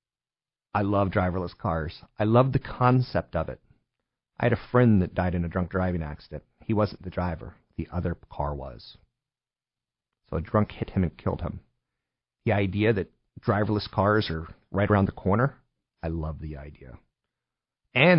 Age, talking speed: 40-59, 170 wpm